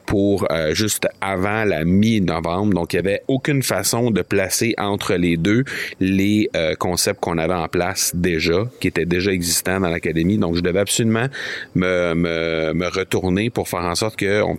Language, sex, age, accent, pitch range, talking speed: French, male, 30-49, Canadian, 85-105 Hz, 180 wpm